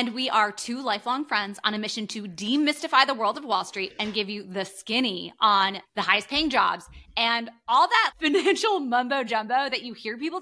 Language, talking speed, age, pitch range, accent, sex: English, 205 wpm, 30-49, 195-265 Hz, American, female